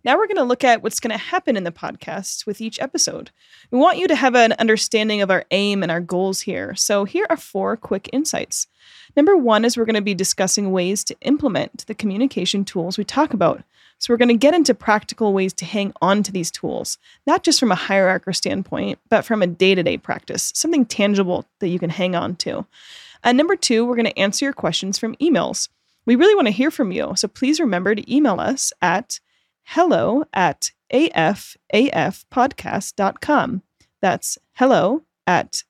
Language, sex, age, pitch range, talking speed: English, female, 20-39, 195-275 Hz, 195 wpm